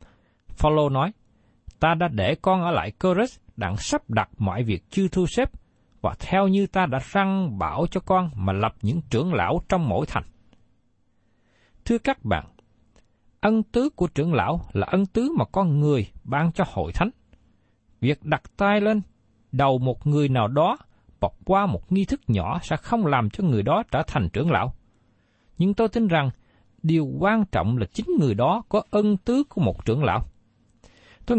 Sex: male